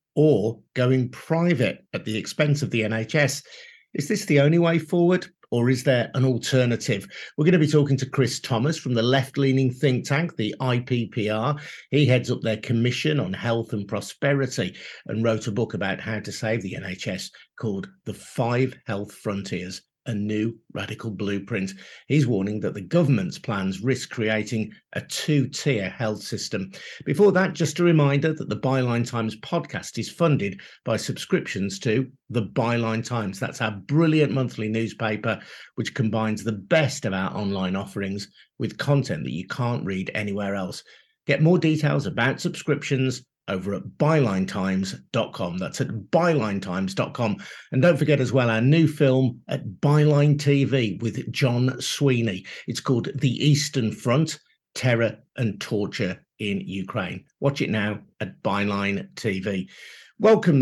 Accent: British